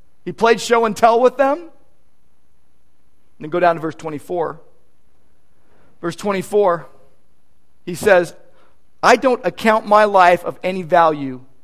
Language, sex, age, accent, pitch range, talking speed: English, male, 40-59, American, 180-250 Hz, 130 wpm